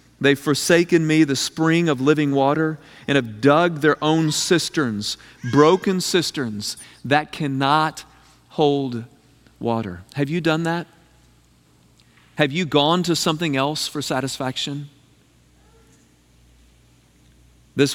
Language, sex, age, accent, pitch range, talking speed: English, male, 40-59, American, 90-150 Hz, 110 wpm